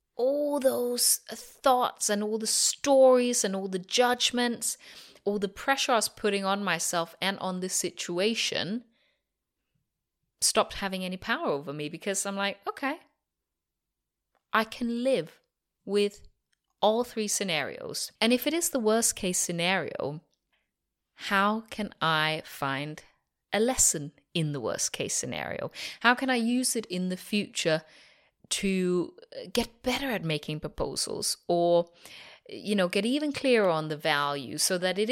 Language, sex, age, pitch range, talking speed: English, female, 30-49, 170-240 Hz, 145 wpm